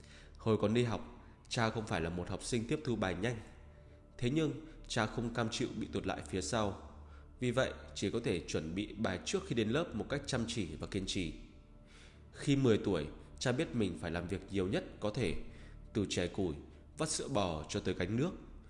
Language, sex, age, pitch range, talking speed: Vietnamese, male, 20-39, 80-115 Hz, 220 wpm